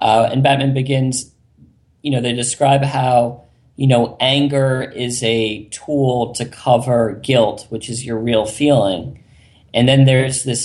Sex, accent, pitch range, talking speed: male, American, 115-135 Hz, 150 wpm